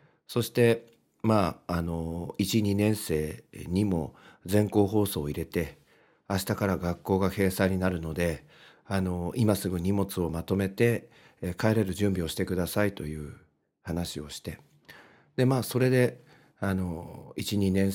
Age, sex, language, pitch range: 50-69, male, Japanese, 80-105 Hz